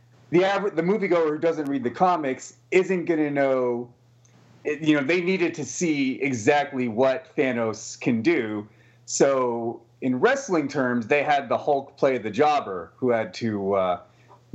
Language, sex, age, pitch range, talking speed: English, male, 30-49, 125-165 Hz, 155 wpm